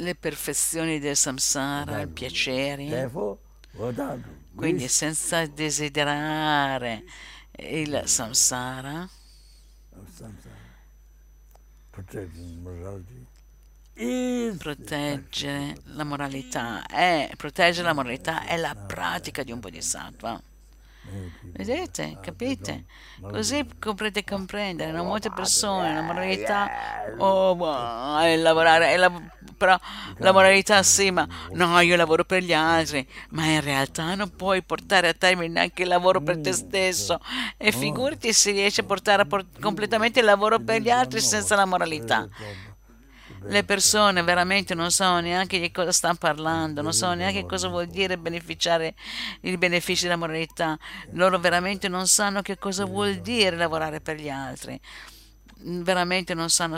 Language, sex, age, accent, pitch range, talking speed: Italian, female, 60-79, native, 135-190 Hz, 120 wpm